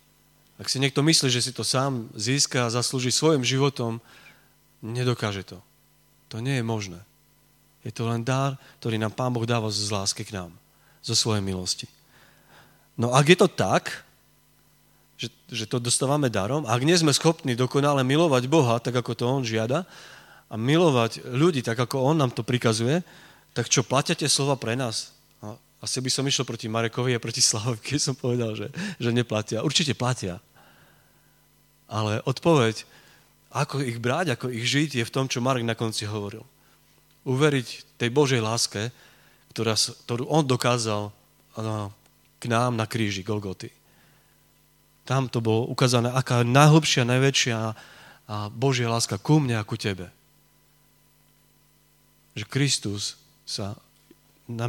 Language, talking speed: Slovak, 150 wpm